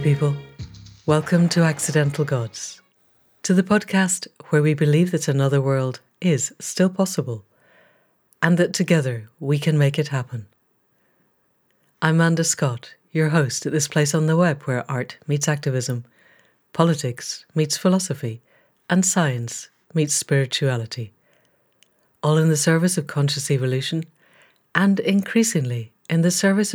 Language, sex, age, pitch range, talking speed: English, female, 60-79, 135-175 Hz, 130 wpm